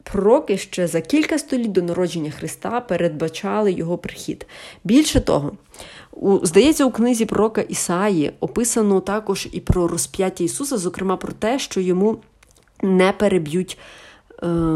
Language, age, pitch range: Ukrainian, 30-49, 170-230 Hz